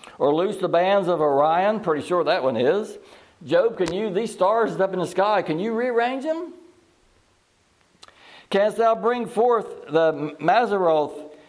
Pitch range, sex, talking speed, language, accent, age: 160-235 Hz, male, 155 wpm, English, American, 60-79